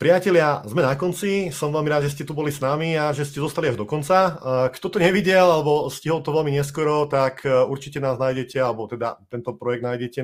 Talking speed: 215 wpm